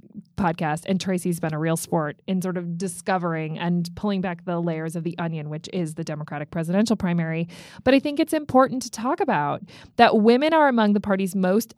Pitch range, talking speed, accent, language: 175-250 Hz, 205 wpm, American, English